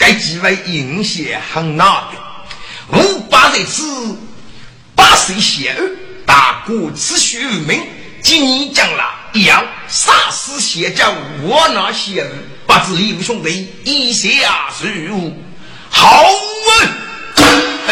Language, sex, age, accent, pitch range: Chinese, male, 50-69, native, 165-270 Hz